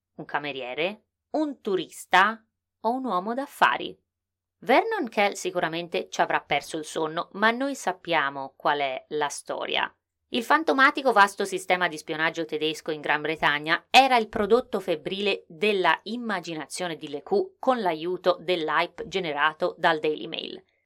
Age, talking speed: 20-39, 135 wpm